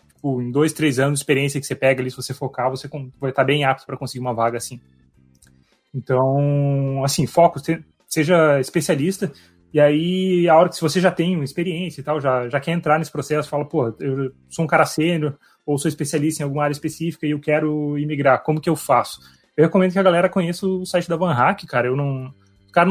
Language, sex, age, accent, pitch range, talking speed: Portuguese, male, 20-39, Brazilian, 135-165 Hz, 215 wpm